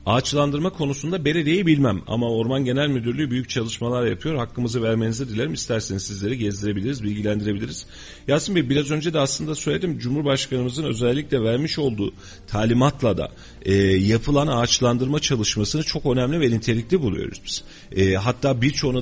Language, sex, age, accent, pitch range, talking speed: Turkish, male, 40-59, native, 100-135 Hz, 140 wpm